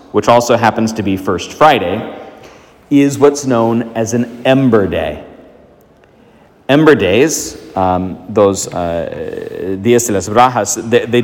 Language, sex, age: English, male, 40-59